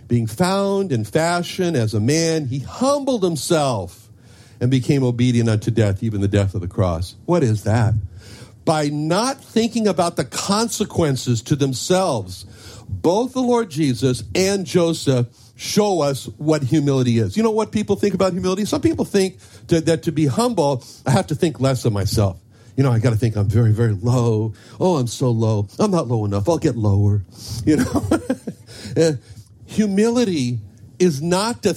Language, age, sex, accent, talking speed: English, 60-79, male, American, 170 wpm